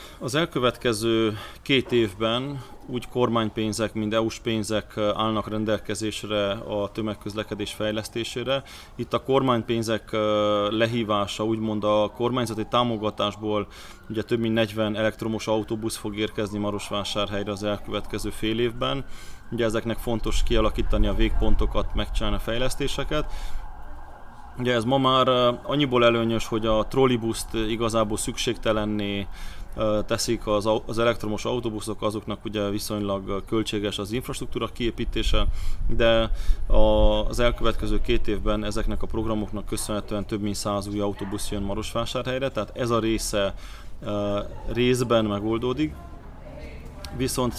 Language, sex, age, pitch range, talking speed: Hungarian, male, 20-39, 105-115 Hz, 110 wpm